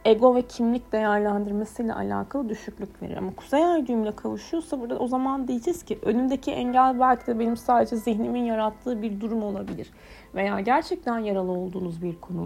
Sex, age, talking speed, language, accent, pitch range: female, 30-49, 160 wpm, Turkish, native, 200-250 Hz